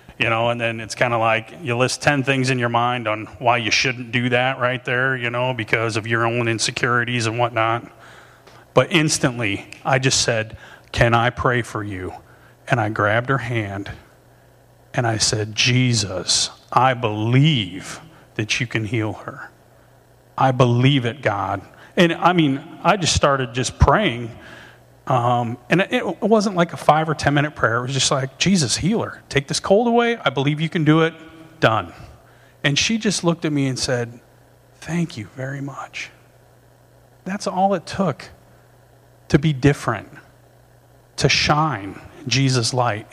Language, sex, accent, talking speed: English, male, American, 170 wpm